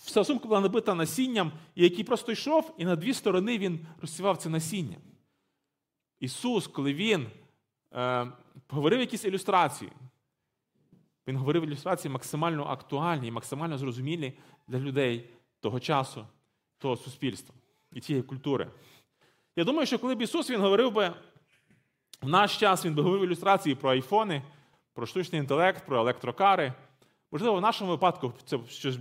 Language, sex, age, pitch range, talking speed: Ukrainian, male, 30-49, 135-190 Hz, 145 wpm